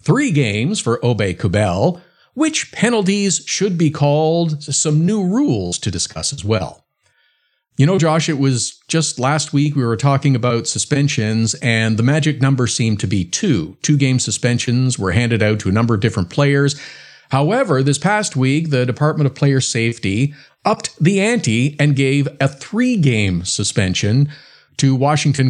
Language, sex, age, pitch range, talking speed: English, male, 50-69, 115-150 Hz, 160 wpm